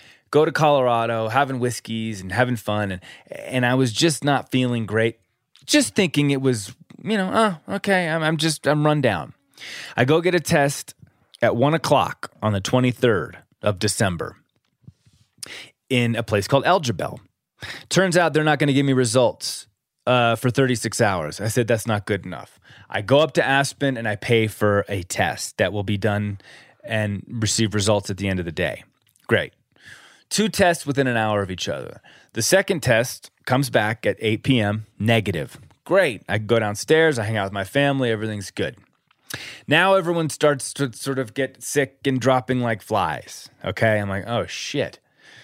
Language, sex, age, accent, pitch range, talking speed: English, male, 20-39, American, 105-145 Hz, 180 wpm